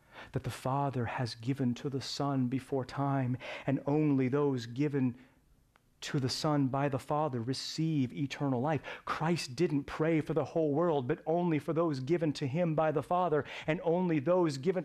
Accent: American